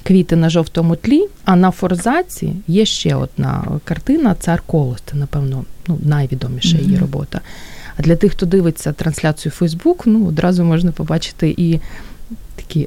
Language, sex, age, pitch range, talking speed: Ukrainian, female, 30-49, 160-205 Hz, 150 wpm